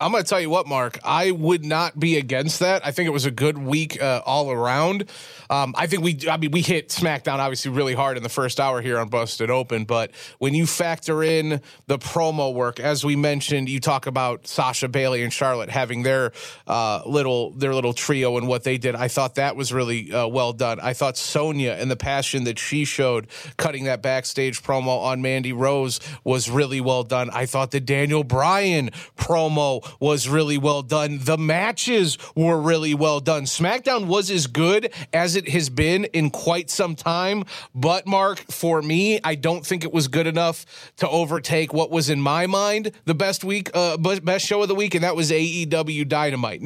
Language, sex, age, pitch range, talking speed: English, male, 30-49, 135-175 Hz, 205 wpm